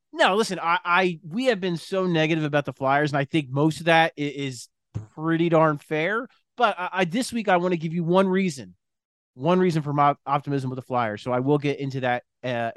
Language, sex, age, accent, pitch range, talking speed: English, male, 30-49, American, 130-170 Hz, 230 wpm